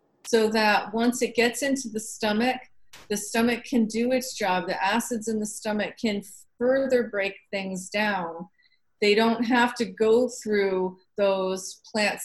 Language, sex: English, female